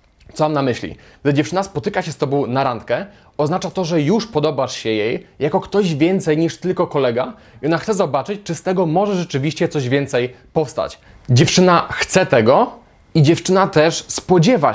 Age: 20-39